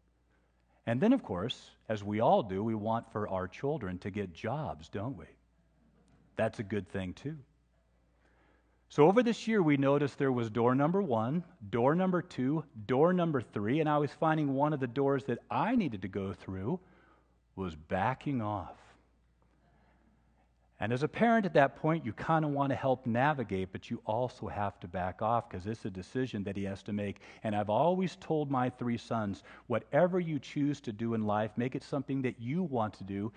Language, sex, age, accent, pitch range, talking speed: English, male, 40-59, American, 100-150 Hz, 195 wpm